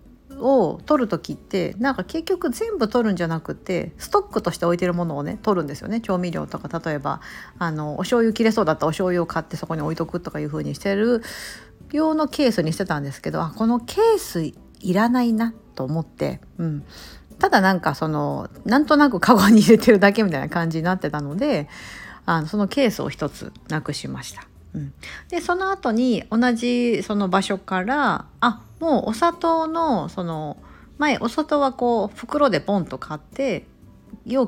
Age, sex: 50-69, female